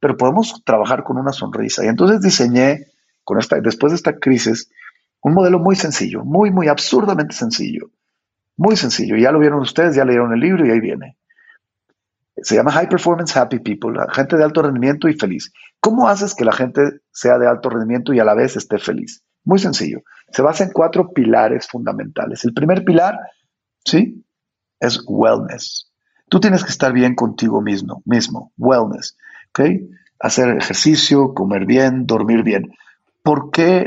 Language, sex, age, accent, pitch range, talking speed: Spanish, male, 40-59, Mexican, 120-180 Hz, 170 wpm